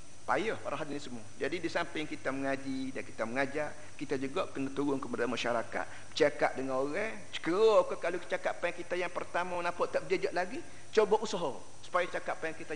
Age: 50-69